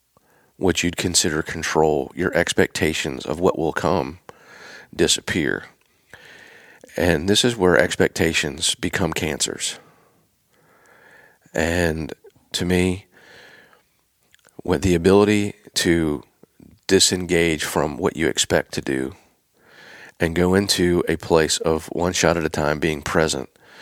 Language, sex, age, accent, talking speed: English, male, 40-59, American, 115 wpm